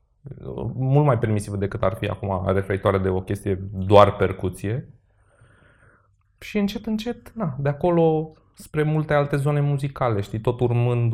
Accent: native